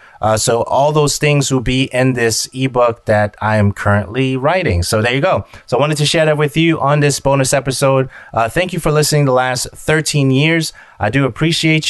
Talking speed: 215 wpm